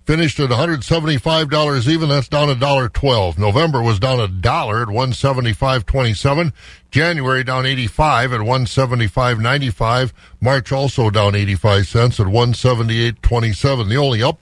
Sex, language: male, English